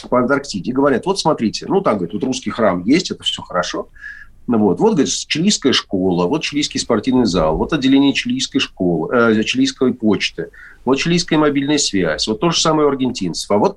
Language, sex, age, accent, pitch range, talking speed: Russian, male, 40-59, native, 105-160 Hz, 185 wpm